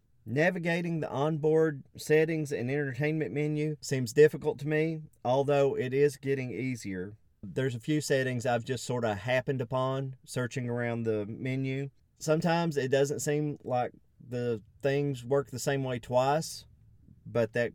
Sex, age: male, 30-49